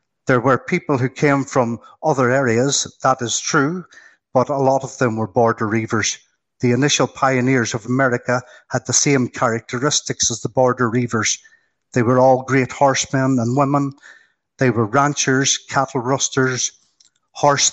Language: English